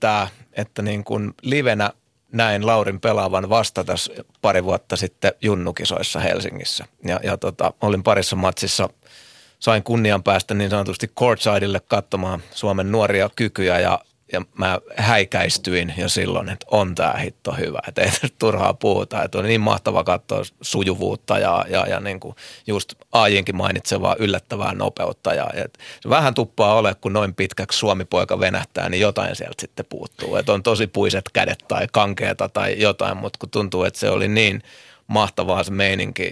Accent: native